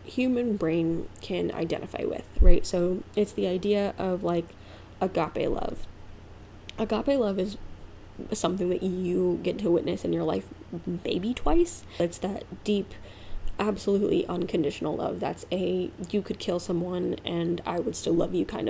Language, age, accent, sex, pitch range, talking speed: English, 10-29, American, female, 170-220 Hz, 150 wpm